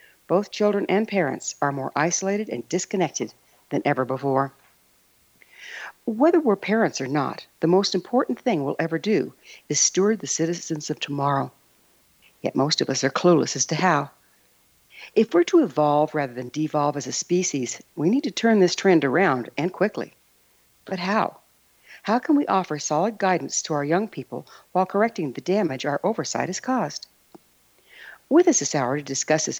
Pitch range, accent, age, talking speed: 150-205 Hz, American, 60-79, 170 wpm